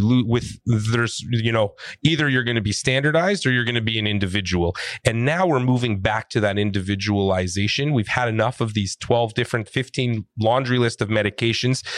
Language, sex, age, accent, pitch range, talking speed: English, male, 30-49, American, 105-135 Hz, 185 wpm